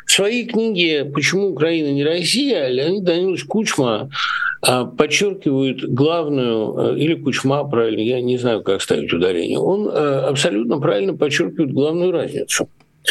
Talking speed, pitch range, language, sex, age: 125 wpm, 130-170 Hz, Russian, male, 60-79